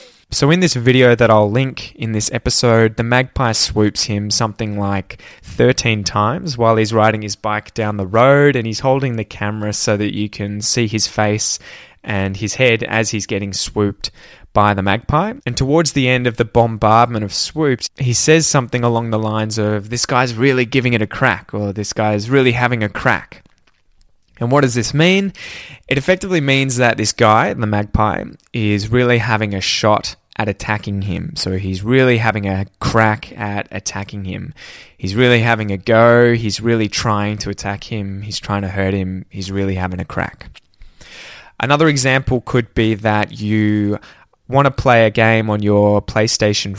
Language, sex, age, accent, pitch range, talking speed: English, male, 20-39, Australian, 105-125 Hz, 185 wpm